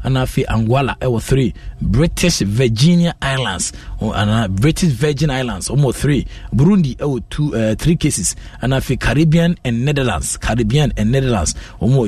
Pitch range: 105-135 Hz